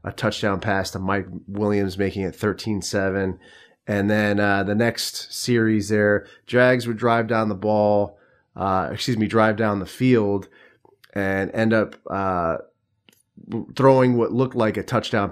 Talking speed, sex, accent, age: 155 wpm, male, American, 30-49